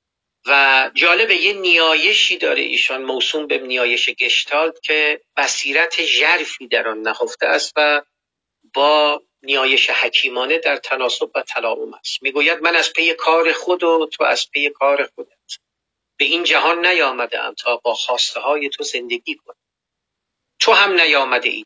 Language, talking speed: Persian, 145 wpm